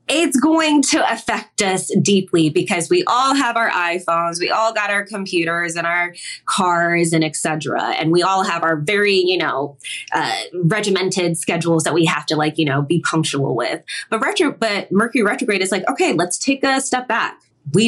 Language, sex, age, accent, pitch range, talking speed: English, female, 20-39, American, 165-230 Hz, 190 wpm